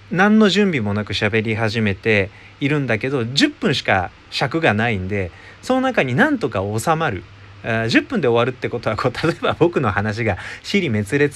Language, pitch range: Japanese, 105-170 Hz